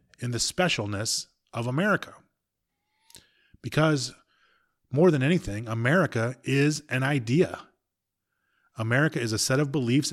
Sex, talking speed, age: male, 115 wpm, 30-49